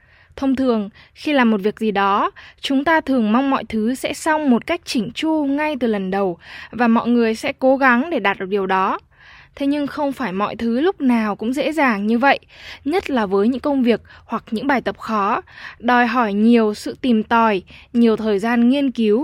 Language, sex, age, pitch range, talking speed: Vietnamese, female, 10-29, 220-280 Hz, 220 wpm